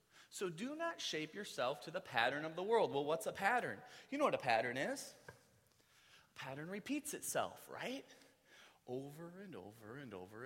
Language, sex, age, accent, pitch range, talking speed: English, male, 30-49, American, 150-235 Hz, 180 wpm